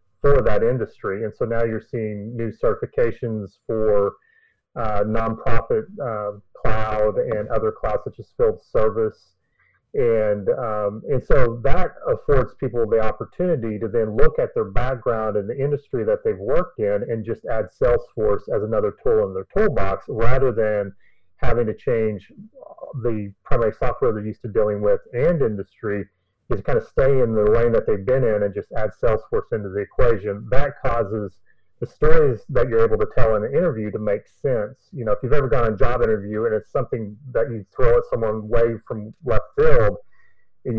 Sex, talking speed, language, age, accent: male, 185 wpm, English, 30-49, American